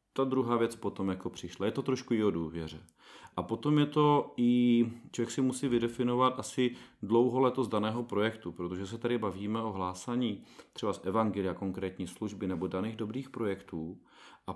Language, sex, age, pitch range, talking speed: Czech, male, 40-59, 95-120 Hz, 170 wpm